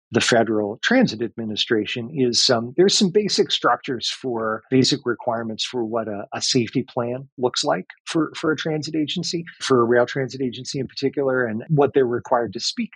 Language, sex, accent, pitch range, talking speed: English, male, American, 115-135 Hz, 180 wpm